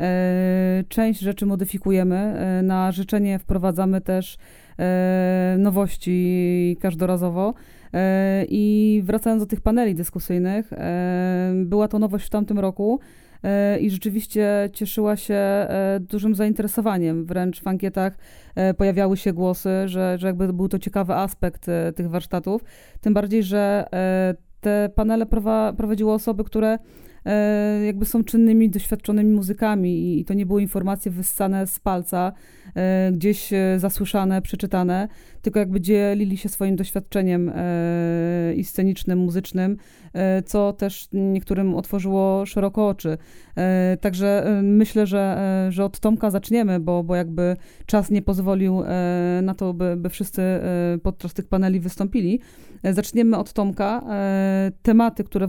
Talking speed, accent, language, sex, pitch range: 115 wpm, native, Polish, female, 185-210 Hz